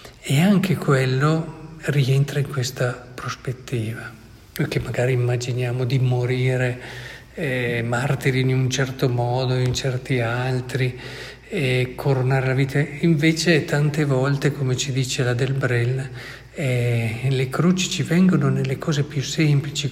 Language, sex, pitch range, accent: Italian, male, 125-140 Hz, native